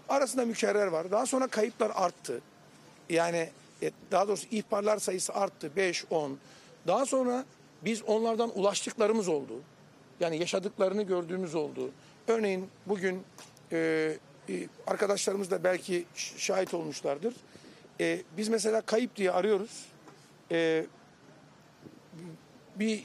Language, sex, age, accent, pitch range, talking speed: Turkish, male, 60-79, native, 170-230 Hz, 95 wpm